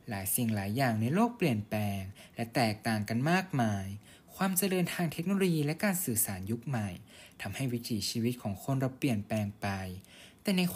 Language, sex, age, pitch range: Thai, male, 20-39, 105-145 Hz